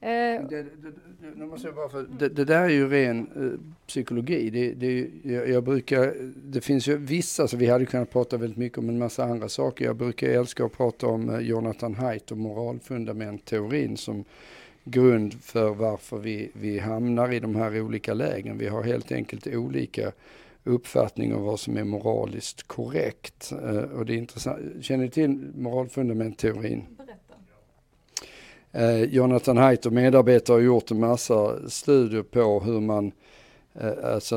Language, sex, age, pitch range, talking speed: Swedish, male, 50-69, 110-125 Hz, 160 wpm